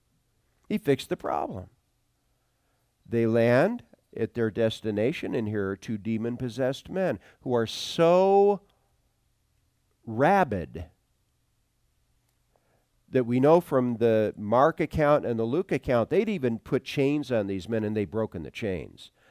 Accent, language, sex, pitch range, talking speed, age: American, English, male, 115-185 Hz, 135 wpm, 50-69